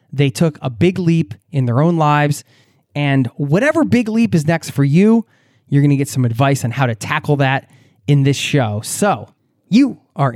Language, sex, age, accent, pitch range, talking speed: English, male, 20-39, American, 135-190 Hz, 195 wpm